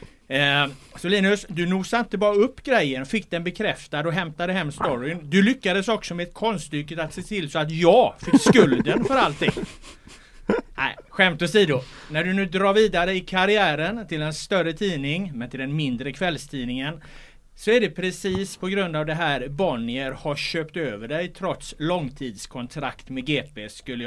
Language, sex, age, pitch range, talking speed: Swedish, male, 30-49, 145-185 Hz, 175 wpm